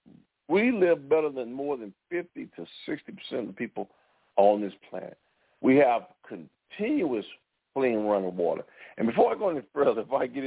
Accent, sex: American, male